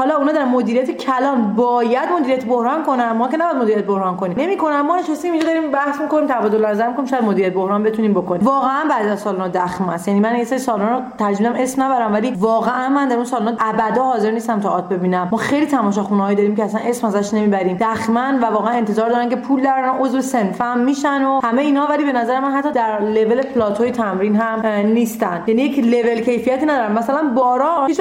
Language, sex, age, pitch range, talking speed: Persian, female, 30-49, 225-285 Hz, 215 wpm